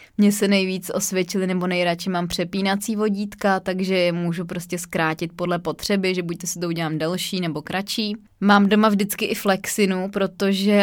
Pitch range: 175-195 Hz